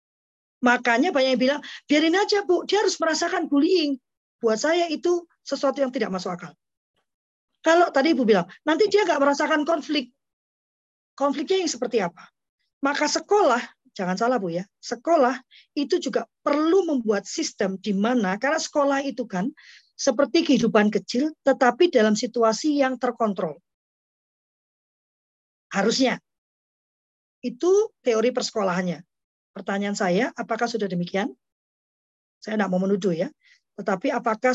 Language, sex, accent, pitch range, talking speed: Indonesian, female, native, 210-290 Hz, 130 wpm